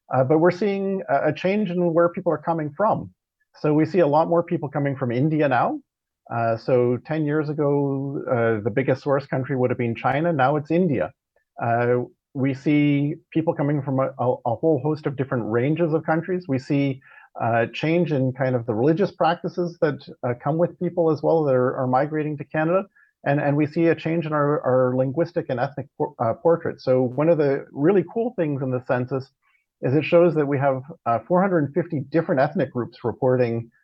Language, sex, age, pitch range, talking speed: English, male, 40-59, 130-170 Hz, 205 wpm